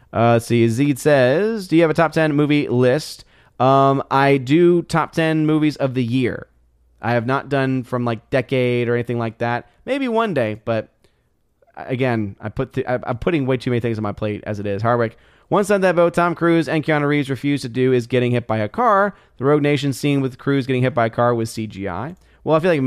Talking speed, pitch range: 235 wpm, 115-145 Hz